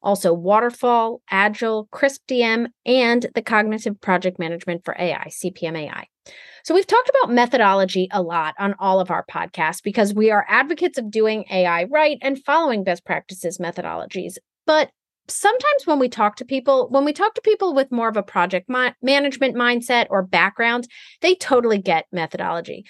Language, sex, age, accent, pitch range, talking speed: English, female, 30-49, American, 200-275 Hz, 165 wpm